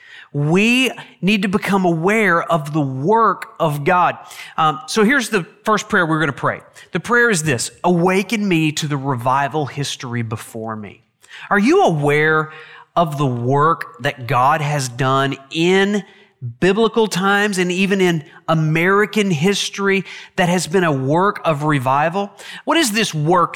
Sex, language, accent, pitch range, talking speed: male, English, American, 155-205 Hz, 155 wpm